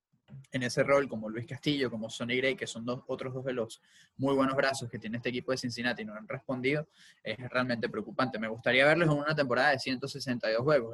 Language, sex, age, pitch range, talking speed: English, male, 20-39, 115-140 Hz, 225 wpm